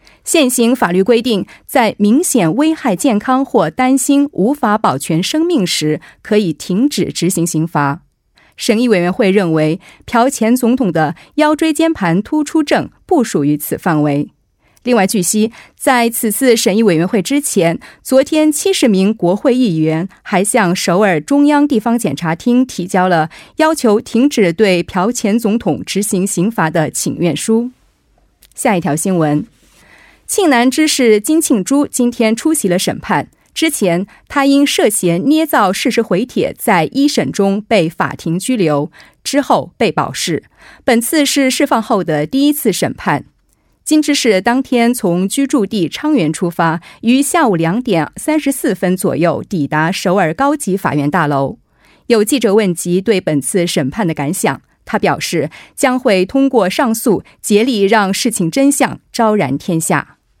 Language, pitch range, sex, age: Korean, 175-265 Hz, female, 30-49